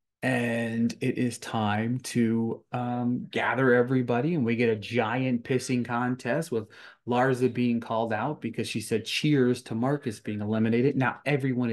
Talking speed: 155 wpm